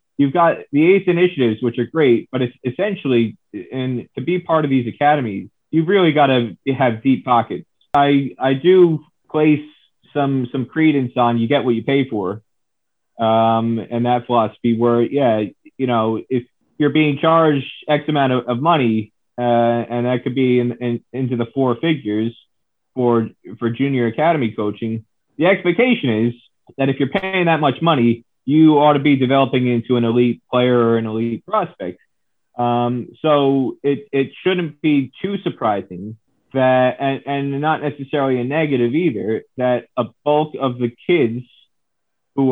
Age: 30-49